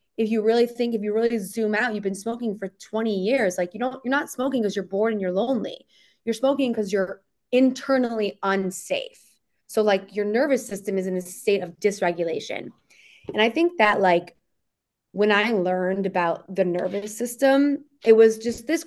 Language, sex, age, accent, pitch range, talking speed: English, female, 20-39, American, 195-235 Hz, 190 wpm